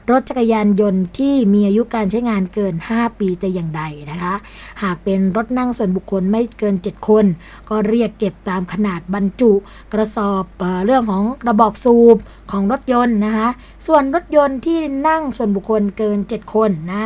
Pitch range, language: 195-235 Hz, Thai